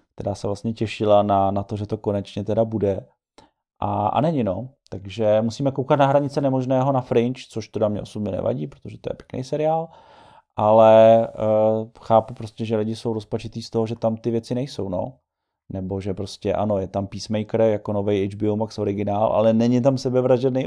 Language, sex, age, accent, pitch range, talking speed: Czech, male, 30-49, native, 105-120 Hz, 190 wpm